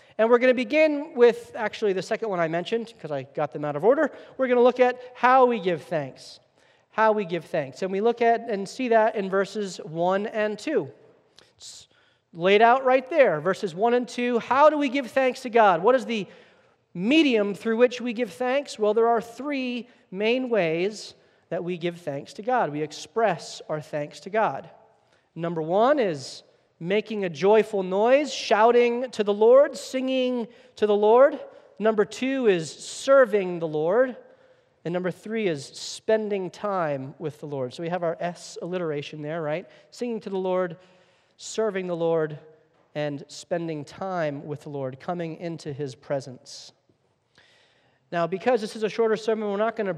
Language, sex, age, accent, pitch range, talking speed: English, male, 40-59, American, 160-235 Hz, 185 wpm